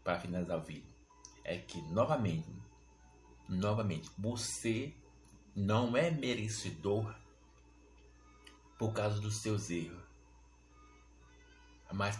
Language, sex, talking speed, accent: Portuguese, male, 90 wpm, Brazilian